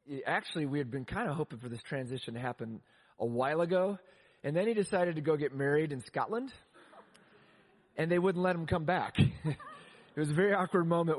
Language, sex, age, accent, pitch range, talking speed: English, male, 30-49, American, 135-170 Hz, 205 wpm